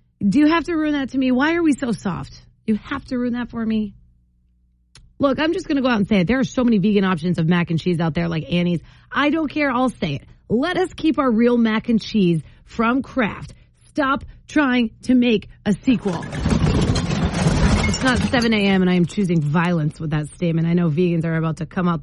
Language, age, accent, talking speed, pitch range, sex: English, 30-49, American, 235 wpm, 160-255 Hz, female